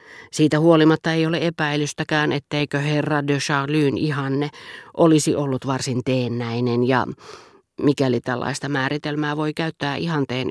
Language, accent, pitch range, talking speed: Finnish, native, 125-155 Hz, 120 wpm